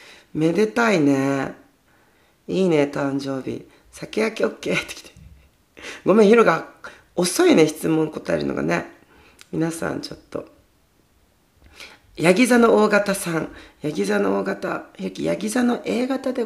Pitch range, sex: 135-220 Hz, female